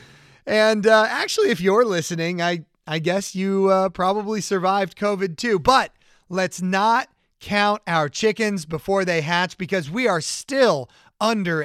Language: English